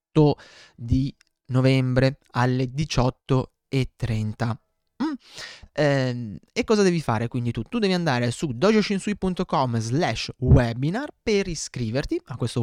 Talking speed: 100 wpm